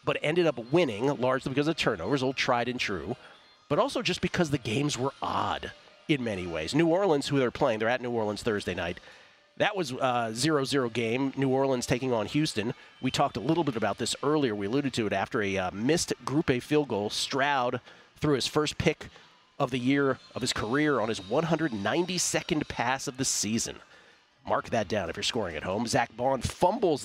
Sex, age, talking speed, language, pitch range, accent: male, 40-59, 205 wpm, English, 125-150 Hz, American